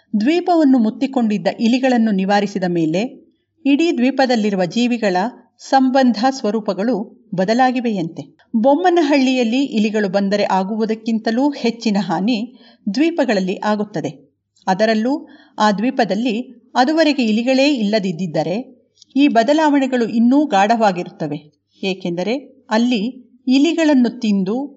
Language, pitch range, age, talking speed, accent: Kannada, 205-265 Hz, 50-69, 80 wpm, native